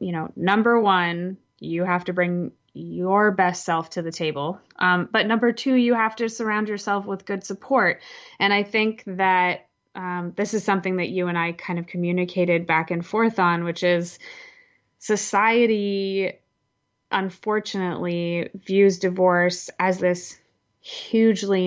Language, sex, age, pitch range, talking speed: English, female, 20-39, 175-200 Hz, 150 wpm